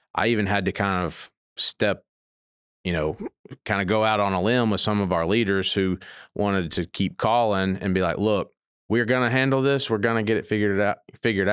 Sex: male